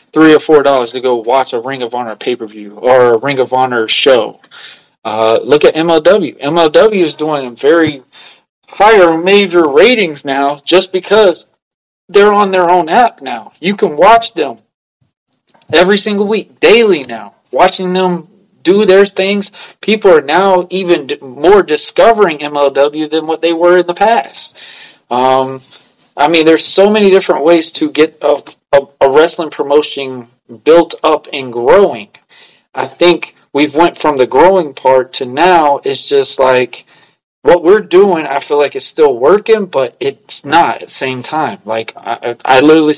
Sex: male